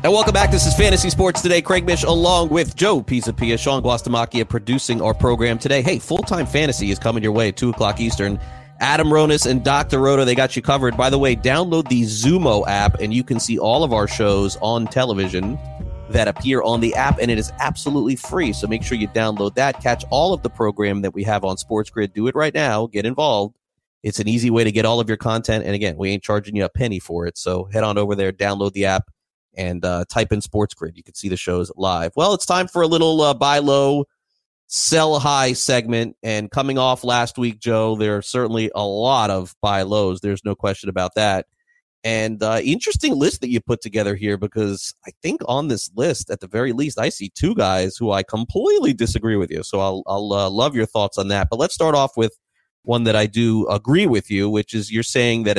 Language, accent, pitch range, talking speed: English, American, 100-130 Hz, 230 wpm